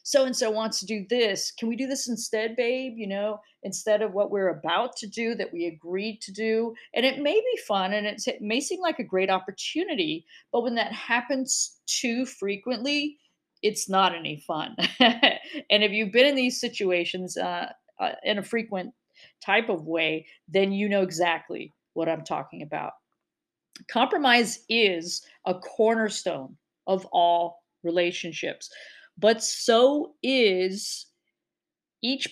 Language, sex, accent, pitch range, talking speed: English, female, American, 185-245 Hz, 150 wpm